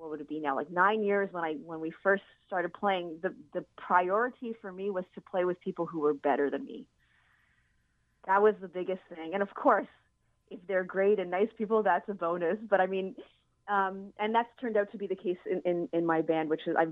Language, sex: English, female